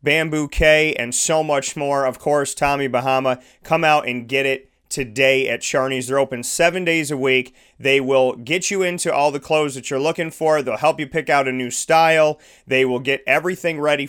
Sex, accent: male, American